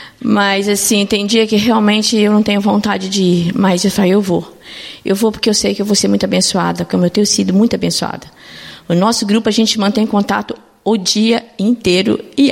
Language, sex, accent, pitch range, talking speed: Portuguese, female, Brazilian, 185-225 Hz, 215 wpm